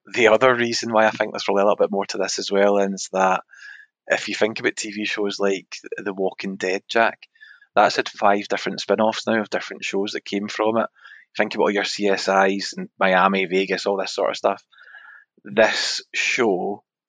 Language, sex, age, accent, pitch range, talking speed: English, male, 20-39, British, 95-105 Hz, 200 wpm